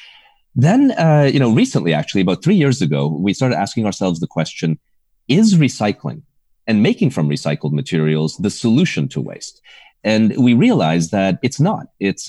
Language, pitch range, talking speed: English, 85-135 Hz, 165 wpm